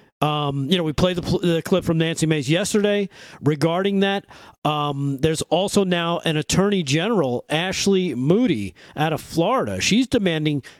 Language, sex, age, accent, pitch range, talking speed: English, male, 40-59, American, 150-190 Hz, 155 wpm